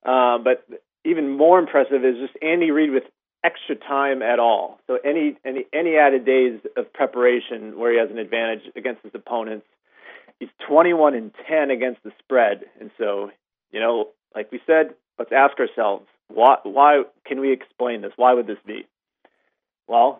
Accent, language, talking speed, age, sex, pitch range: American, English, 170 wpm, 30-49, male, 120-140 Hz